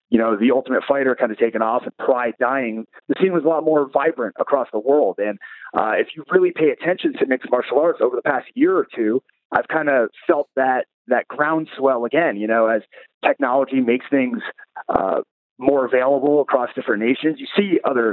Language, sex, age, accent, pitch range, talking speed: English, male, 30-49, American, 130-175 Hz, 205 wpm